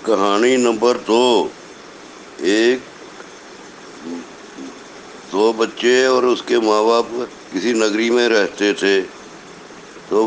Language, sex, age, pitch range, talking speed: Hindi, male, 60-79, 115-140 Hz, 95 wpm